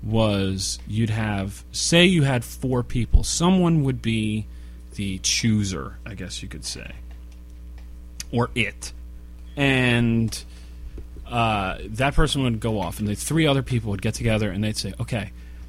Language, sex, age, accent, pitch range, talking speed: English, male, 30-49, American, 90-125 Hz, 150 wpm